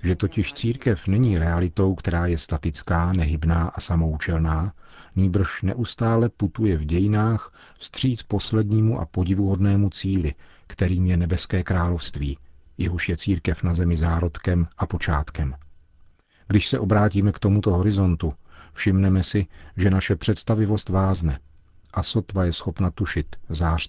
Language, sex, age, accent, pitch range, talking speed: Czech, male, 40-59, native, 80-95 Hz, 130 wpm